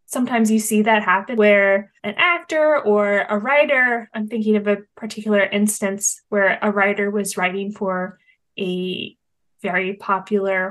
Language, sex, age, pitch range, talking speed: English, female, 10-29, 190-225 Hz, 145 wpm